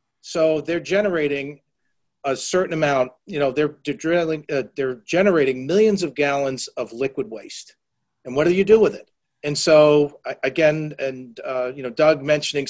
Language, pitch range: English, 145-190 Hz